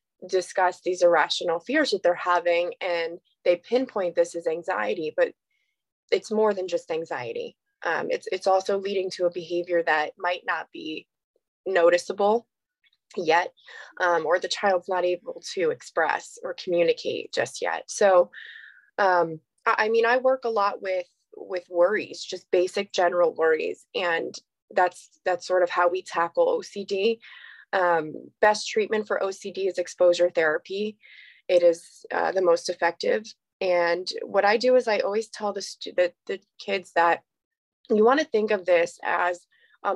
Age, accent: 20-39, American